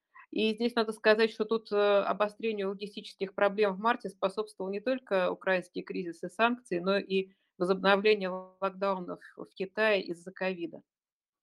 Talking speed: 130 wpm